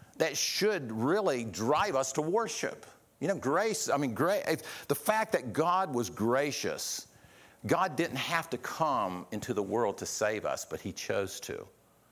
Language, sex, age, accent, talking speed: English, male, 50-69, American, 170 wpm